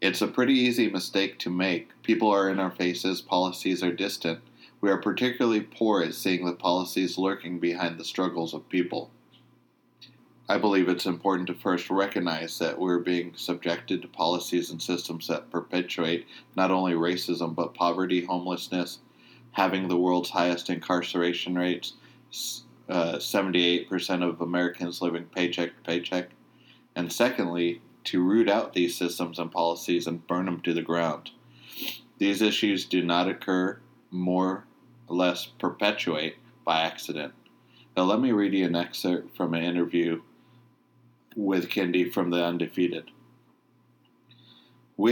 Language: English